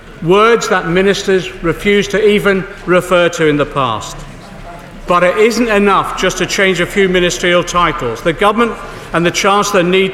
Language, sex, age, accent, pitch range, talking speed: English, male, 50-69, British, 170-205 Hz, 165 wpm